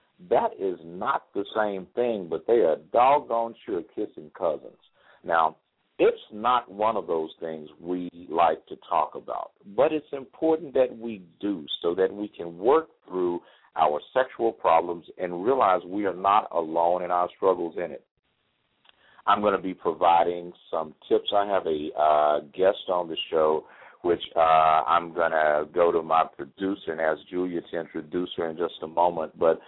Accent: American